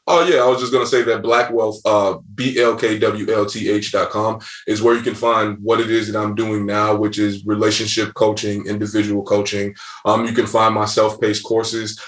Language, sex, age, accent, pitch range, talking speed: English, male, 20-39, American, 105-115 Hz, 185 wpm